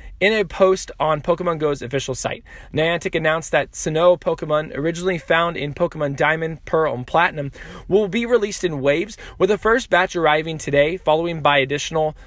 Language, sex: English, male